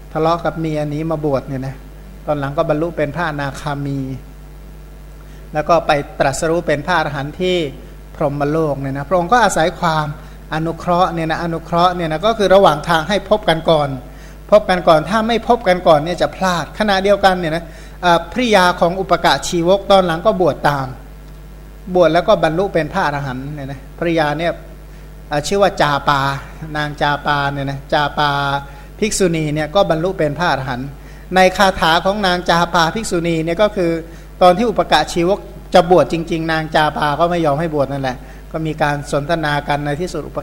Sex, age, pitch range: male, 60-79, 150-180 Hz